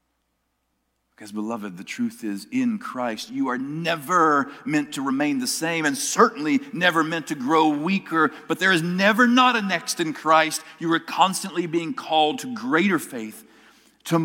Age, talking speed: 50-69, 170 wpm